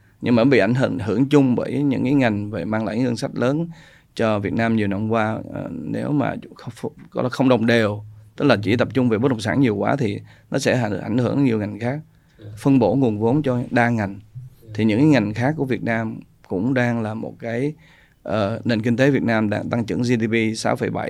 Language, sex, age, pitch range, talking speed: Vietnamese, male, 20-39, 110-135 Hz, 220 wpm